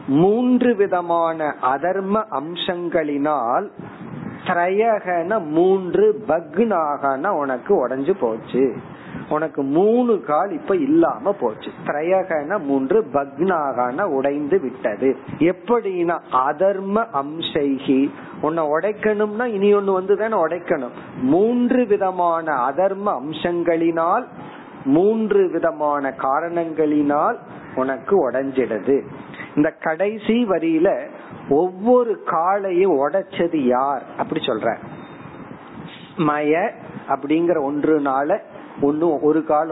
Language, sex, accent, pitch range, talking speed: Tamil, male, native, 145-200 Hz, 85 wpm